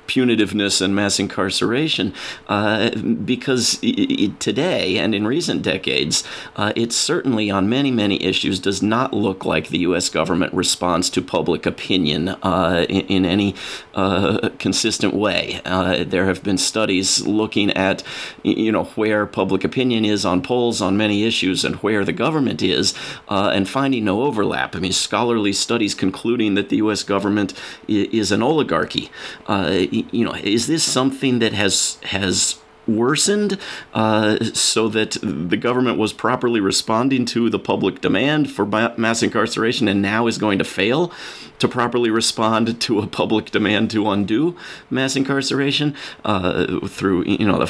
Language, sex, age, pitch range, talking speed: English, male, 40-59, 95-120 Hz, 155 wpm